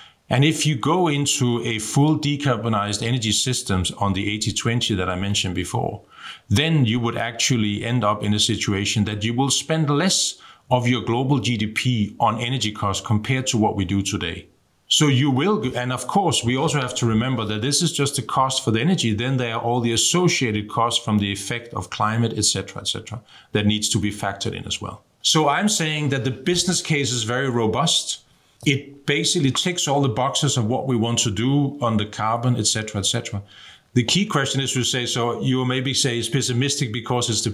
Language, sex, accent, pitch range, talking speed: German, male, Danish, 110-140 Hz, 215 wpm